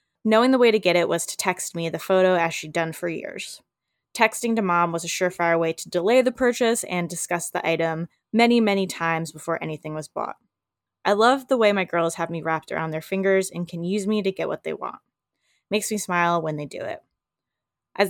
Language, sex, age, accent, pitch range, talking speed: English, female, 10-29, American, 170-215 Hz, 225 wpm